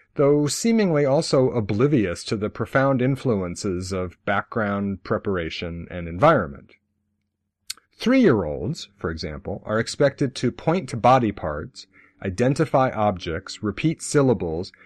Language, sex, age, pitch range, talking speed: English, male, 40-59, 100-140 Hz, 110 wpm